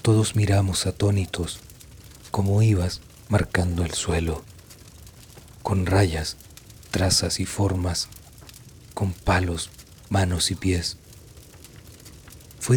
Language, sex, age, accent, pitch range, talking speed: Spanish, male, 40-59, Mexican, 90-105 Hz, 90 wpm